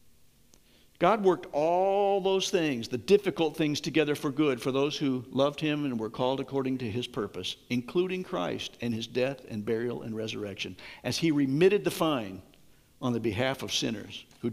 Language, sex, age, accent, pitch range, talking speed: English, male, 60-79, American, 125-180 Hz, 180 wpm